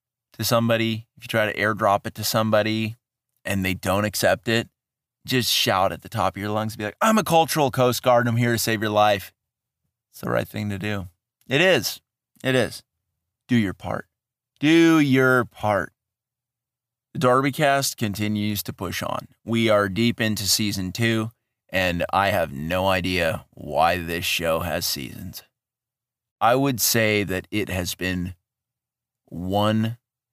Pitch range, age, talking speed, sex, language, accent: 100-125 Hz, 30-49, 165 wpm, male, English, American